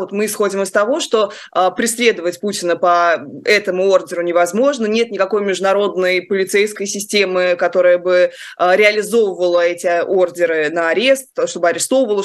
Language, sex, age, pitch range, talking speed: Russian, female, 20-39, 185-225 Hz, 135 wpm